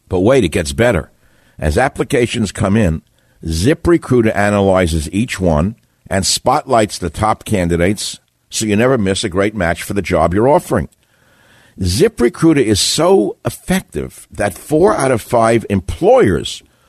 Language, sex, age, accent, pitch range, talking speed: English, male, 60-79, American, 90-120 Hz, 140 wpm